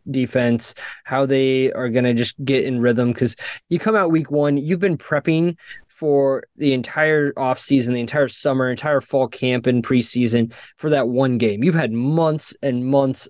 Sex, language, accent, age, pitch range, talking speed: male, English, American, 20-39, 125-150 Hz, 180 wpm